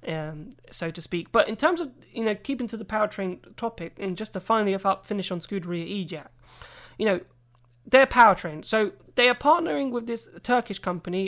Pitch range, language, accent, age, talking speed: 180-220 Hz, English, British, 20-39, 190 wpm